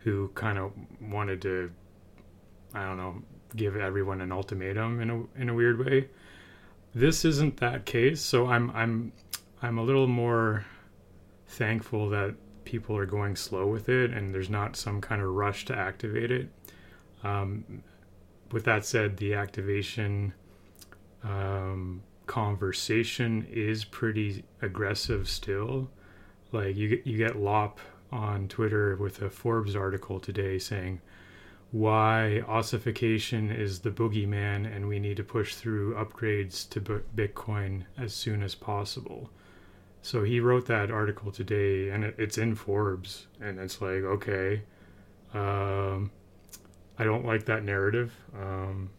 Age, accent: 30-49, American